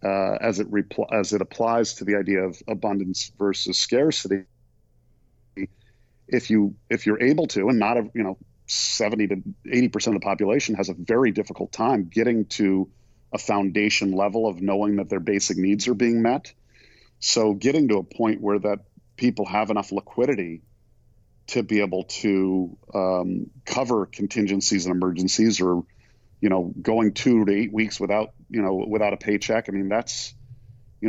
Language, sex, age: English, male, 40-59